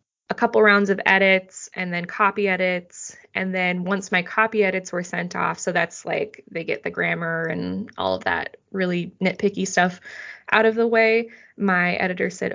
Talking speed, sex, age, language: 185 wpm, female, 20-39, English